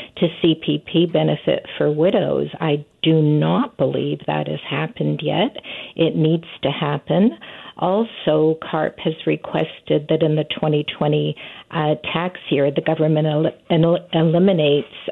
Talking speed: 125 wpm